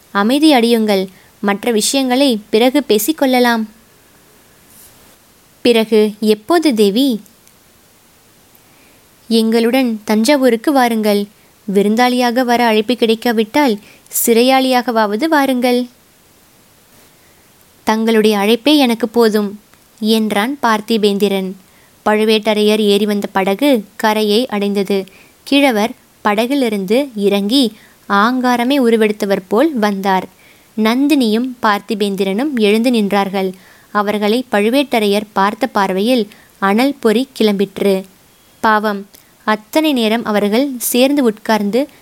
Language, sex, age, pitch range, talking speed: Tamil, female, 20-39, 210-250 Hz, 75 wpm